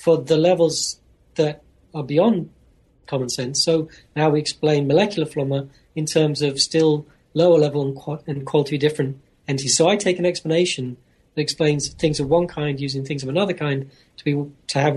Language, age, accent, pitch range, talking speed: English, 40-59, British, 135-170 Hz, 175 wpm